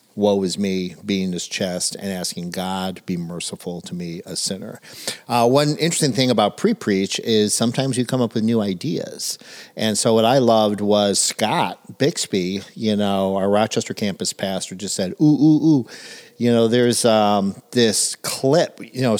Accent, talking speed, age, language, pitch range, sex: American, 180 wpm, 50-69, English, 95-120 Hz, male